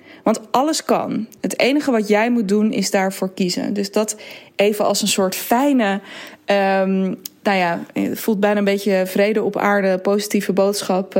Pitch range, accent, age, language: 195-245 Hz, Dutch, 20-39, Dutch